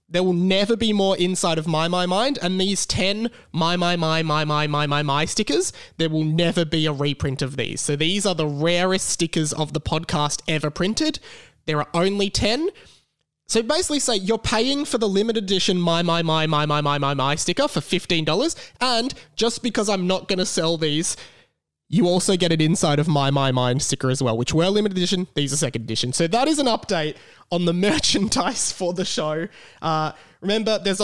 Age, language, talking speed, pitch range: 20-39, English, 210 wpm, 150-205 Hz